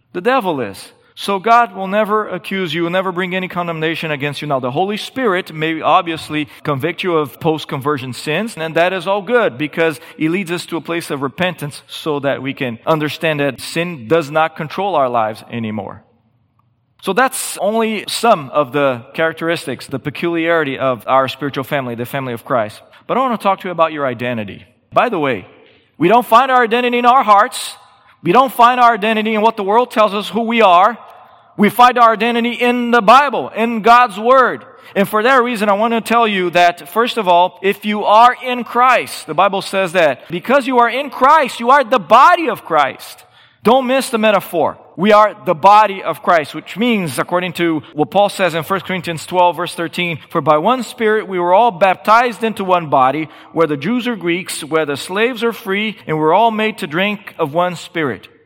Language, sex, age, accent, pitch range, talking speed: English, male, 40-59, American, 155-225 Hz, 205 wpm